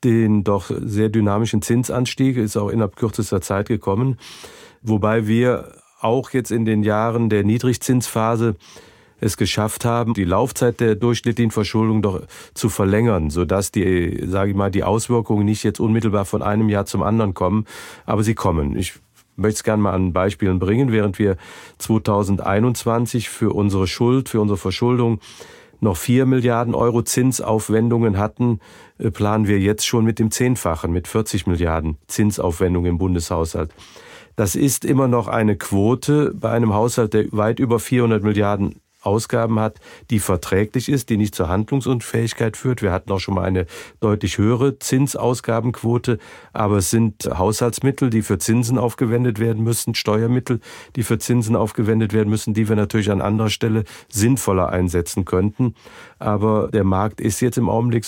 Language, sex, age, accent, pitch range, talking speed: German, male, 40-59, German, 100-120 Hz, 155 wpm